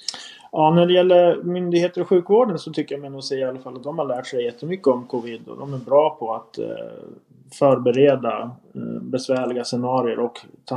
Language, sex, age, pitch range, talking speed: Swedish, male, 20-39, 120-155 Hz, 160 wpm